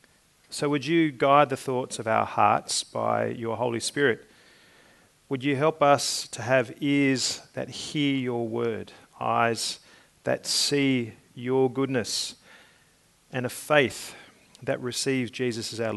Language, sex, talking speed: English, male, 140 wpm